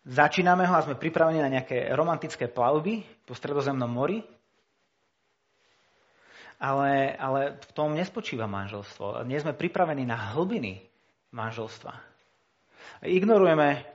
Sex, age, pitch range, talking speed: male, 30-49, 125-165 Hz, 110 wpm